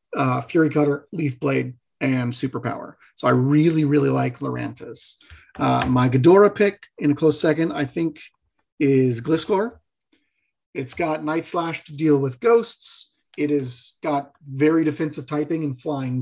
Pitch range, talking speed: 135-170 Hz, 150 wpm